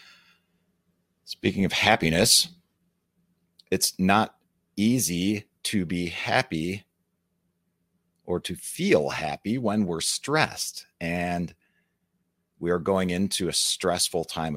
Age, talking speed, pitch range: 40-59, 100 wpm, 85-100 Hz